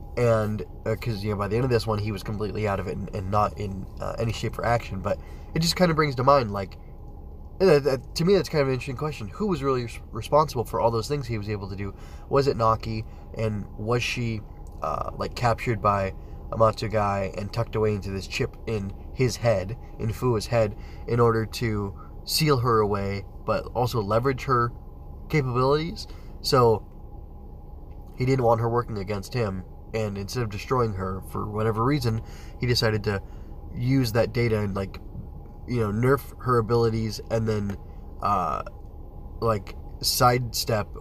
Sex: male